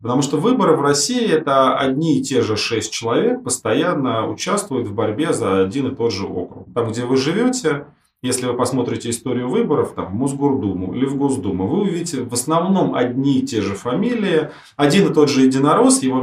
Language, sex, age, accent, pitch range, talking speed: Russian, male, 30-49, native, 110-150 Hz, 190 wpm